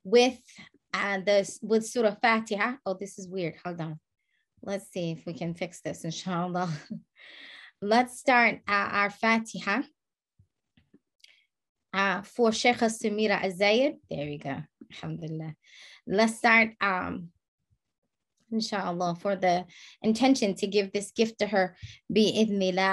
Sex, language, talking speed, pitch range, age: female, English, 130 wpm, 195-235 Hz, 20-39